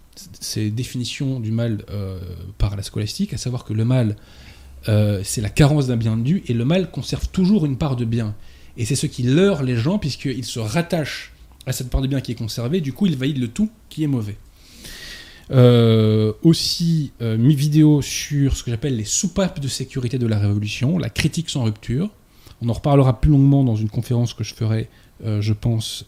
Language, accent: French, French